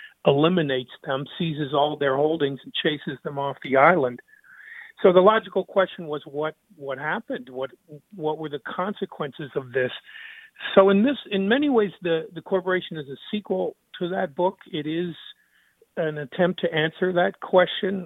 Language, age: English, 50-69